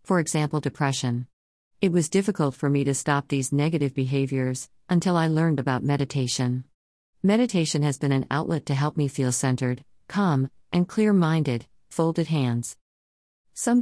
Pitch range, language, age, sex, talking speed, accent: 130-155 Hz, English, 50-69, female, 150 wpm, American